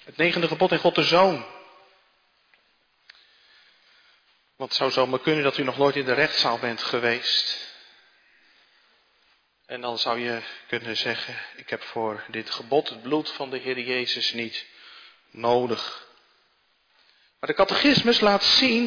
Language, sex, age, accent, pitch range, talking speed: Dutch, male, 40-59, Dutch, 145-200 Hz, 145 wpm